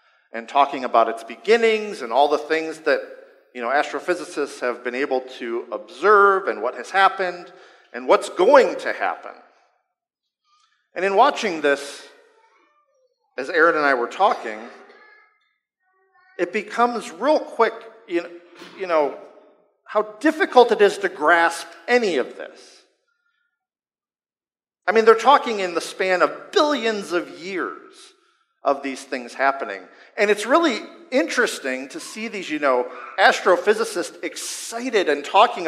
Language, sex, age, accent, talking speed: English, male, 50-69, American, 140 wpm